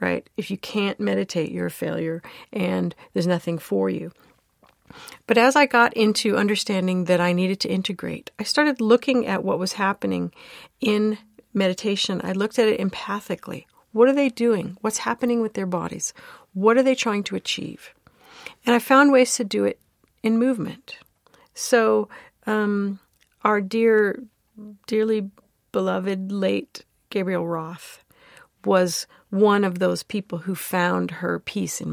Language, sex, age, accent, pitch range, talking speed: English, female, 50-69, American, 180-225 Hz, 150 wpm